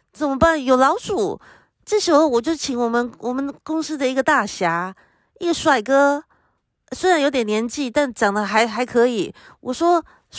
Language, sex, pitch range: Chinese, female, 215-290 Hz